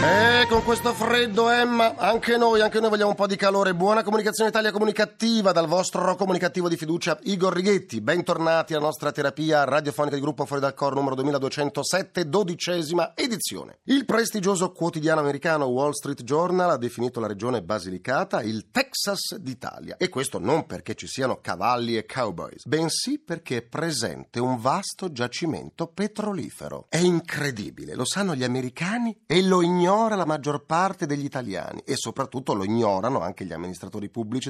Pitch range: 115-190 Hz